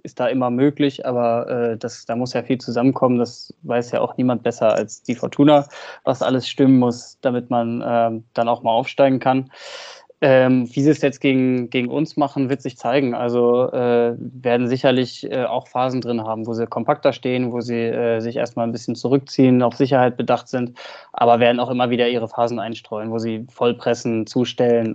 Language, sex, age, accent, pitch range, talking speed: German, male, 20-39, German, 120-135 Hz, 200 wpm